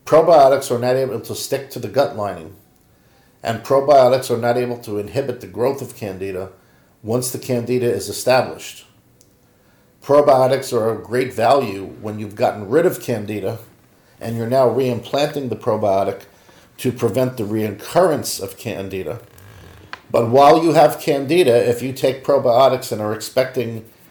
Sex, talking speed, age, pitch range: male, 150 wpm, 50-69, 105-130 Hz